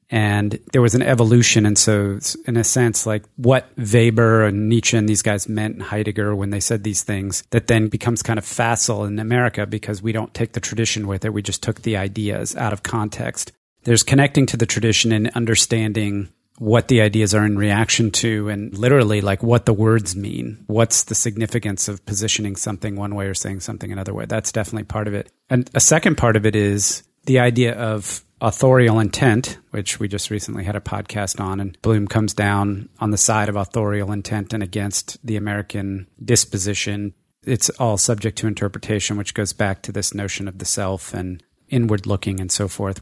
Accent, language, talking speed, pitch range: American, English, 200 wpm, 100-115 Hz